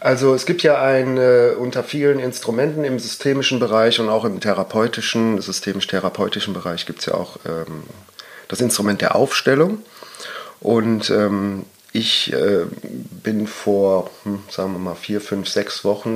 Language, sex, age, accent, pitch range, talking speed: German, male, 40-59, German, 105-130 Hz, 150 wpm